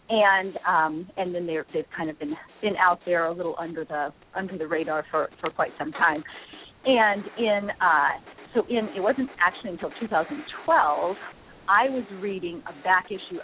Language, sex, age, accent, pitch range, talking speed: English, female, 40-59, American, 170-210 Hz, 175 wpm